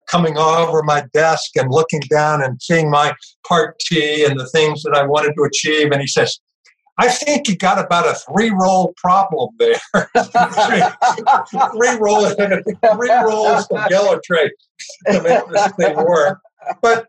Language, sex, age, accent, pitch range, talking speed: English, male, 60-79, American, 145-195 Hz, 155 wpm